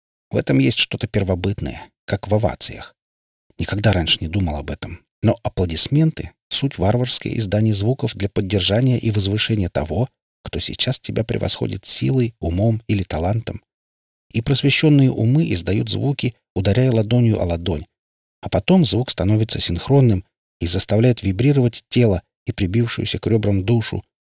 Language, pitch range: Russian, 85-120 Hz